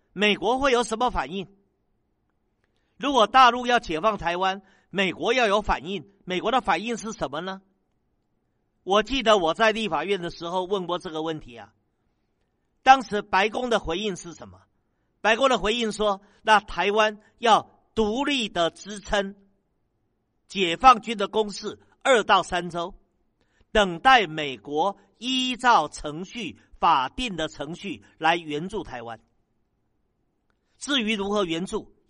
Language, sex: Chinese, male